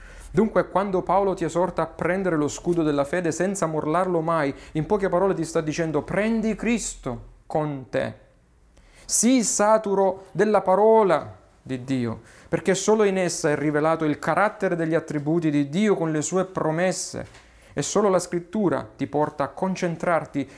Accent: native